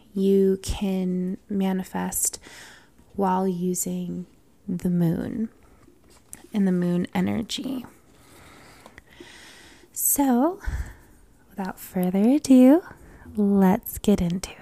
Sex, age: female, 20-39